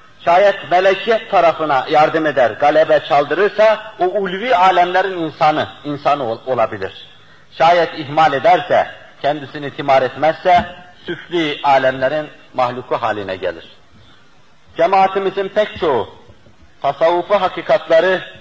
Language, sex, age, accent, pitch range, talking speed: Turkish, male, 50-69, native, 135-180 Hz, 95 wpm